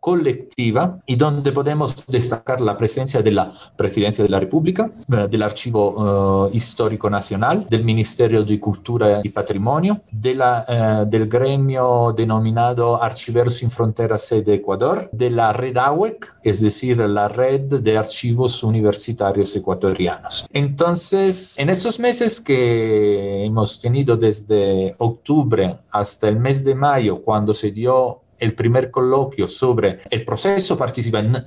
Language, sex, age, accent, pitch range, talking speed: Spanish, male, 50-69, Italian, 110-140 Hz, 135 wpm